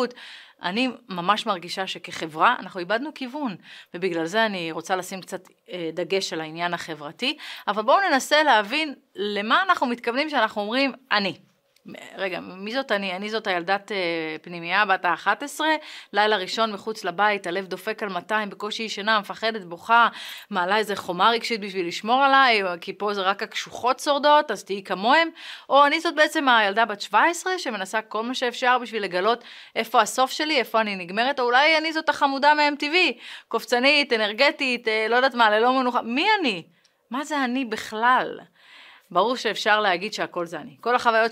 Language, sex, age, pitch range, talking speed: Hebrew, female, 30-49, 185-250 Hz, 165 wpm